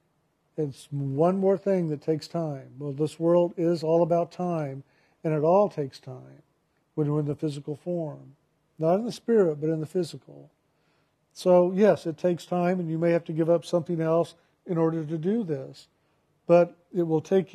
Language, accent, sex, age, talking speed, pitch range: English, American, male, 50-69, 195 wpm, 150-170 Hz